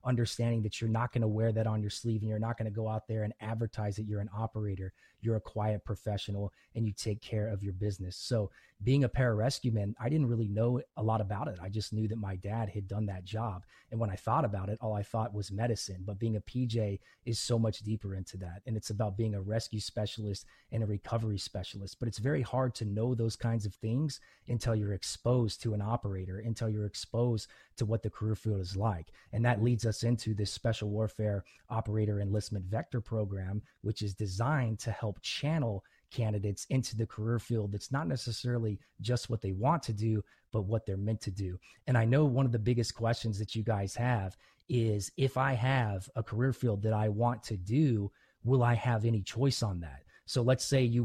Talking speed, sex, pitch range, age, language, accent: 225 wpm, male, 105-120 Hz, 30-49, English, American